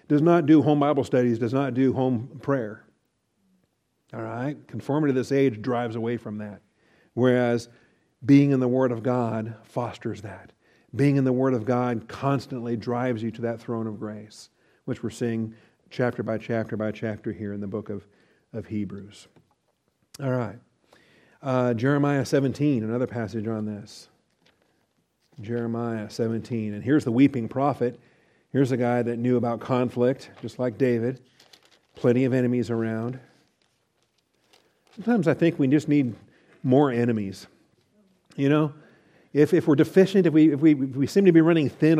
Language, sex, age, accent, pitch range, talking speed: English, male, 50-69, American, 115-145 Hz, 165 wpm